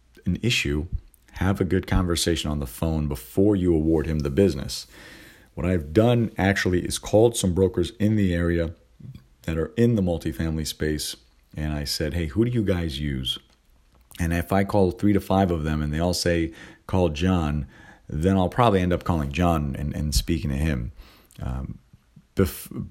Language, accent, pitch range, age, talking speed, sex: English, American, 70-95 Hz, 40-59, 180 wpm, male